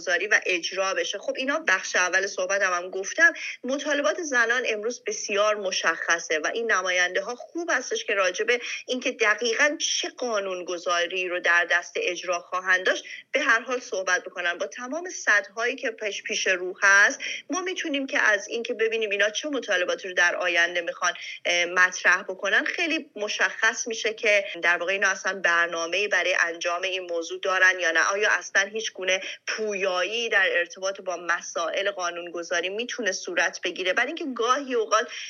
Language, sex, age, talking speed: Persian, female, 30-49, 170 wpm